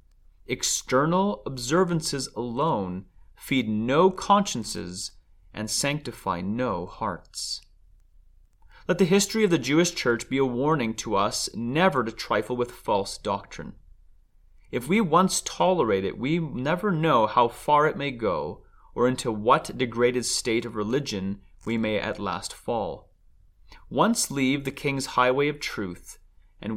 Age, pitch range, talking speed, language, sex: 30-49, 105-150 Hz, 135 wpm, English, male